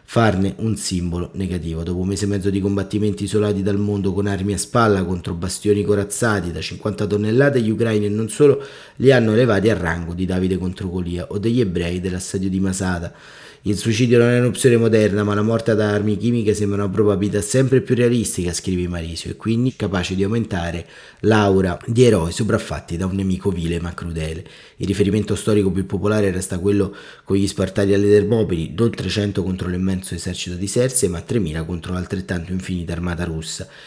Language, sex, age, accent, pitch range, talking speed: Italian, male, 30-49, native, 95-110 Hz, 185 wpm